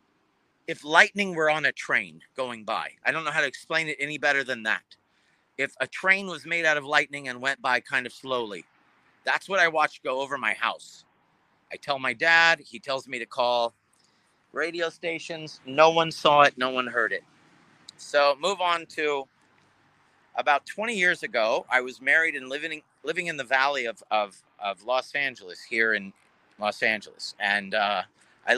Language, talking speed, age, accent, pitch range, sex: English, 185 wpm, 40-59, American, 120-155 Hz, male